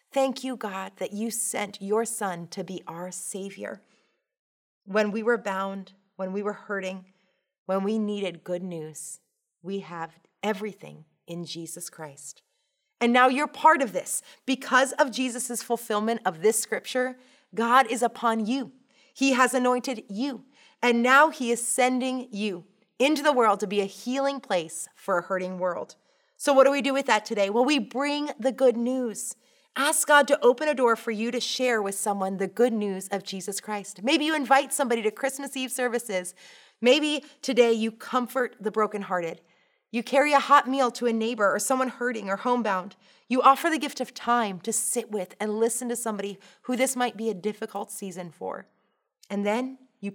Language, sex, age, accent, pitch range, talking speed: English, female, 30-49, American, 200-260 Hz, 185 wpm